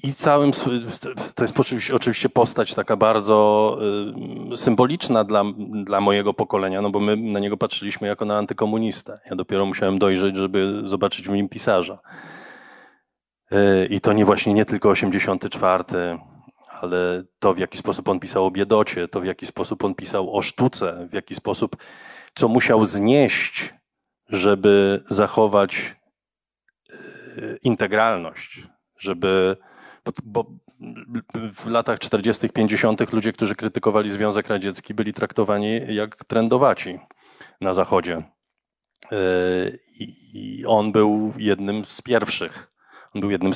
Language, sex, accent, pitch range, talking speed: Polish, male, native, 95-110 Hz, 125 wpm